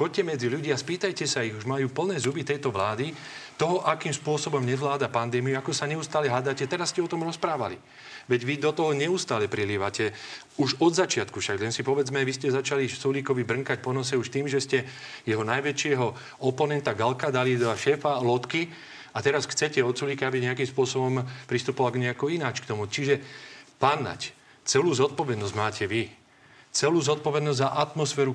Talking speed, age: 170 wpm, 40-59